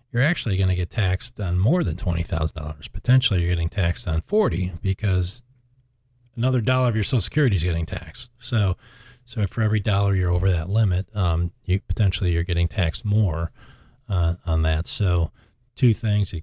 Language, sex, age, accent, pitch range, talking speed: English, male, 40-59, American, 90-120 Hz, 185 wpm